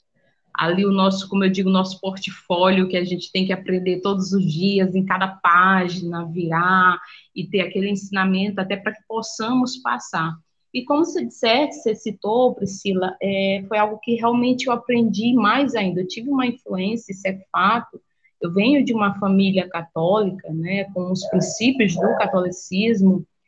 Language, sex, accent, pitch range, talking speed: Portuguese, female, Brazilian, 185-245 Hz, 165 wpm